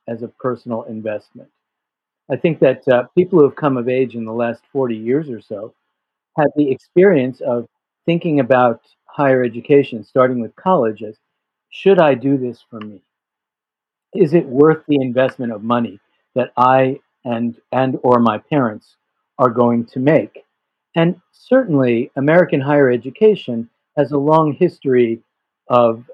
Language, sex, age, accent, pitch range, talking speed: English, male, 50-69, American, 120-145 Hz, 155 wpm